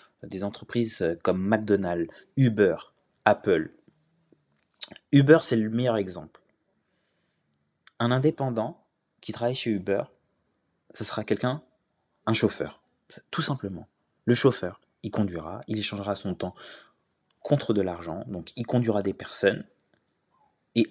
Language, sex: French, male